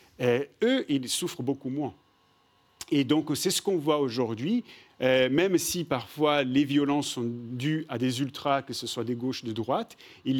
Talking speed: 185 wpm